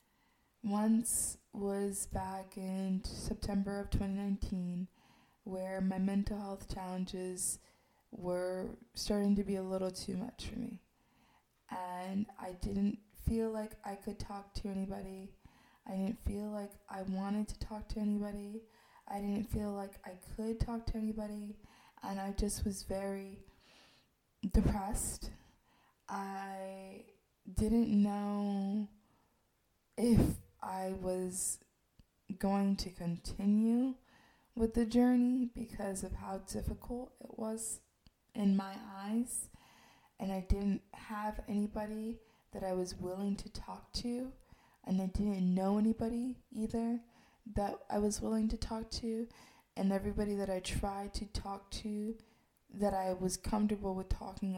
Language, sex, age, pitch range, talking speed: English, female, 20-39, 195-220 Hz, 130 wpm